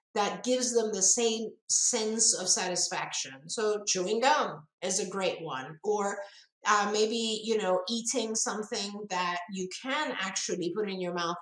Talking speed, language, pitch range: 160 wpm, English, 185-235 Hz